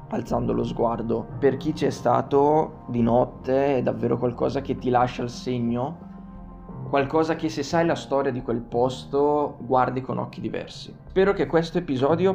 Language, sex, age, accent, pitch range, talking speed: Italian, male, 20-39, native, 120-145 Hz, 165 wpm